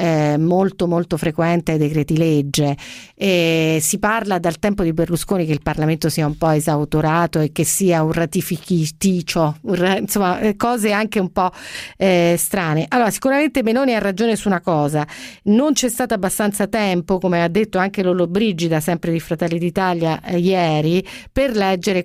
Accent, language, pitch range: native, Italian, 170-210 Hz